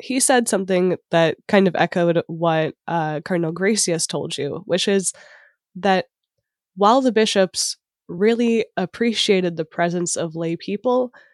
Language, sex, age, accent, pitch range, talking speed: English, female, 10-29, American, 160-200 Hz, 140 wpm